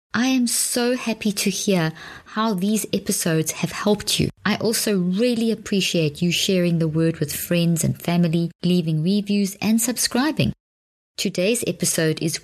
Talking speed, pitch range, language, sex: 150 wpm, 160-205 Hz, English, female